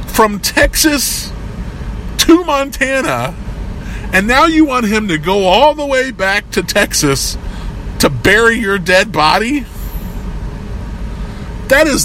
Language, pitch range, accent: English, 150-215 Hz, American